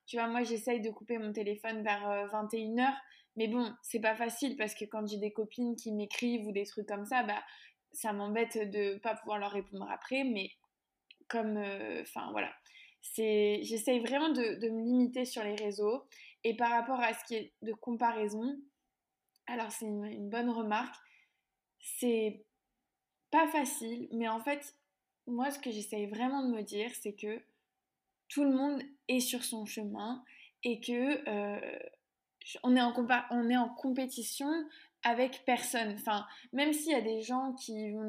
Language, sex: French, female